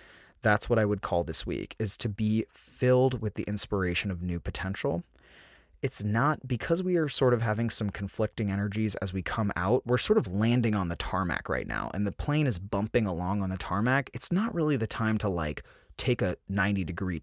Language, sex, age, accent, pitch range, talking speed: English, male, 20-39, American, 95-130 Hz, 215 wpm